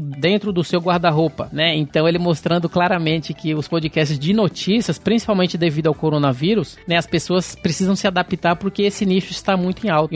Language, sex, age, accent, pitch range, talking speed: Portuguese, male, 20-39, Brazilian, 165-200 Hz, 190 wpm